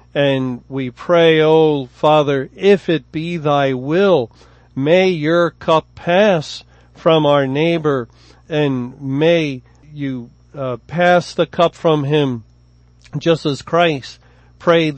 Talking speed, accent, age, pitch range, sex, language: 125 wpm, American, 40-59, 135-165 Hz, male, English